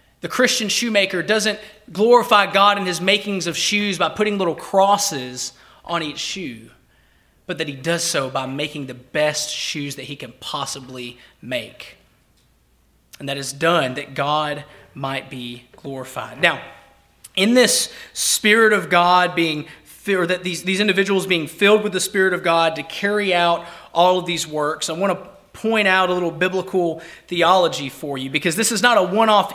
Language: English